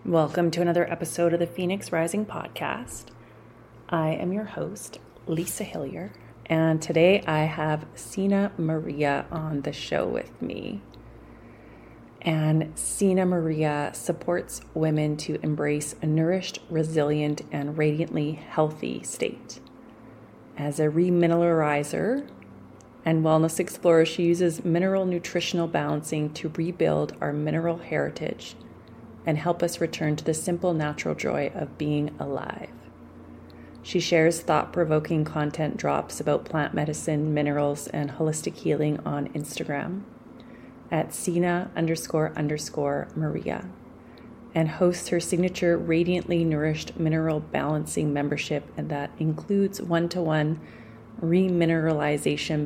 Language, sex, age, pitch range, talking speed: English, female, 30-49, 150-170 Hz, 115 wpm